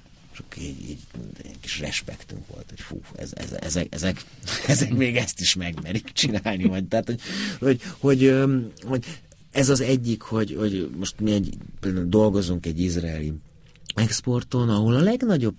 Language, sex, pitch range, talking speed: Hungarian, male, 85-120 Hz, 150 wpm